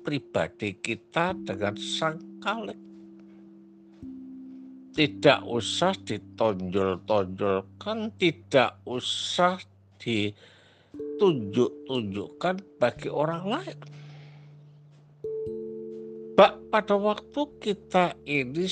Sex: male